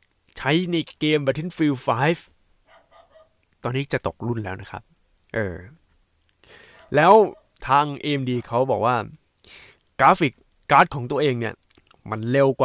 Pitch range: 115-155 Hz